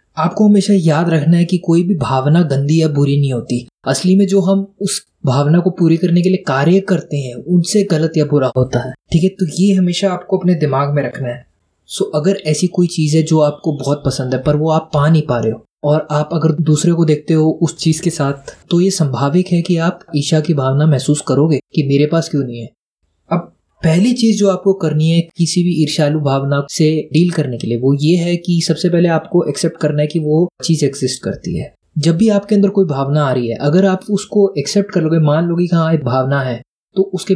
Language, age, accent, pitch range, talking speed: Hindi, 20-39, native, 145-180 Hz, 235 wpm